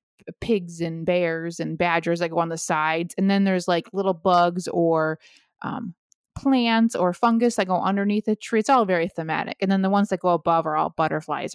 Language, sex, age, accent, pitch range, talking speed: English, female, 20-39, American, 170-215 Hz, 210 wpm